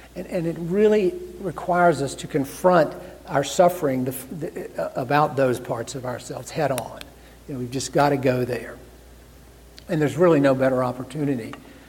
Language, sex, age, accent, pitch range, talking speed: English, male, 60-79, American, 120-145 Hz, 155 wpm